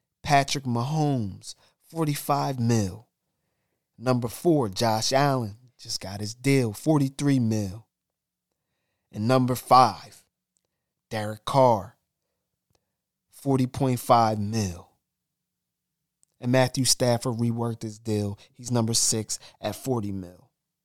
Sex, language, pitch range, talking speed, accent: male, English, 115-145 Hz, 95 wpm, American